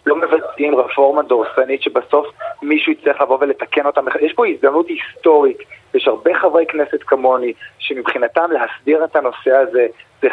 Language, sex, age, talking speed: Hebrew, male, 40-59, 145 wpm